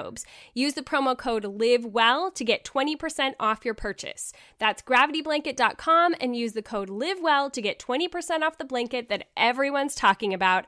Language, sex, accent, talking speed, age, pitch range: English, female, American, 155 wpm, 10-29, 215-280 Hz